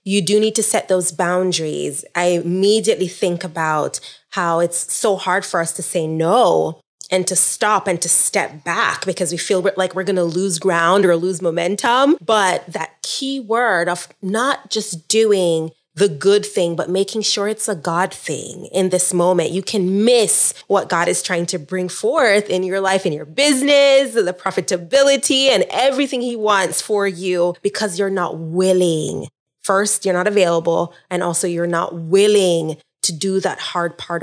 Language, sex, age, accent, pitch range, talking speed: English, female, 20-39, American, 170-205 Hz, 180 wpm